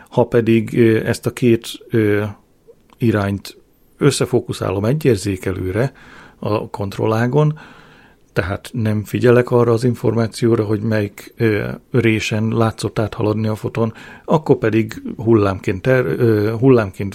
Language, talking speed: Hungarian, 100 wpm